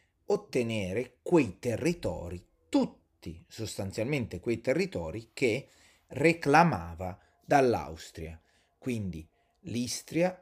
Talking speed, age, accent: 70 wpm, 30-49, native